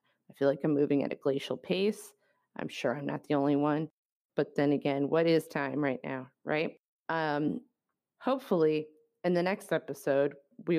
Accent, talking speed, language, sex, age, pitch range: American, 180 wpm, English, female, 30-49, 150-205 Hz